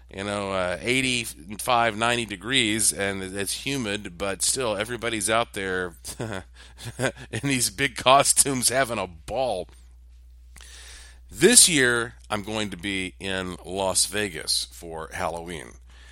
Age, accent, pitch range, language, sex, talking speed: 40-59, American, 80-105 Hz, English, male, 120 wpm